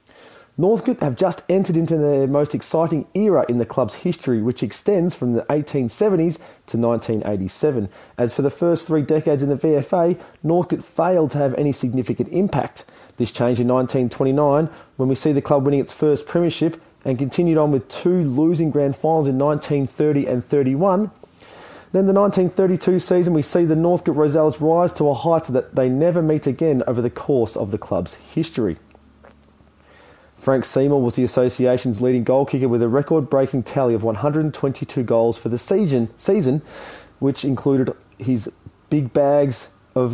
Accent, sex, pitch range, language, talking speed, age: Australian, male, 125-160 Hz, English, 165 wpm, 30-49